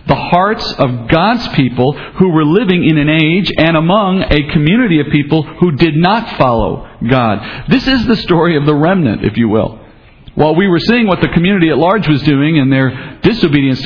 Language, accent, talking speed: English, American, 200 wpm